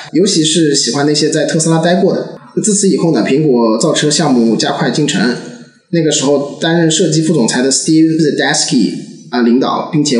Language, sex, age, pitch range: Chinese, male, 20-39, 140-180 Hz